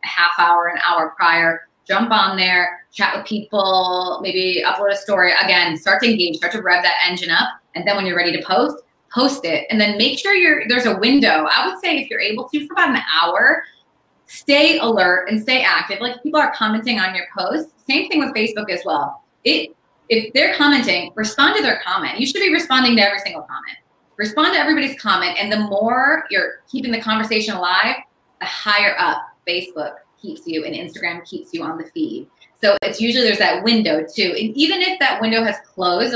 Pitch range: 180-275 Hz